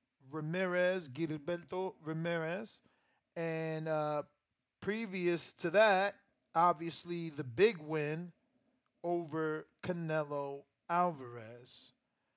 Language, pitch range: English, 150-195 Hz